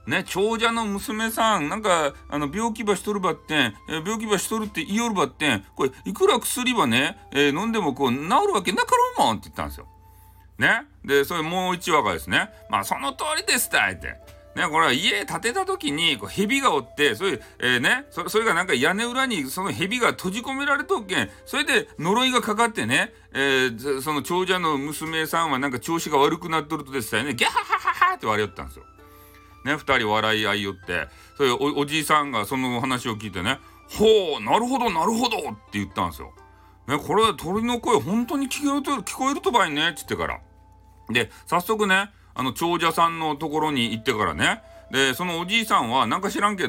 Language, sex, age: Japanese, male, 40-59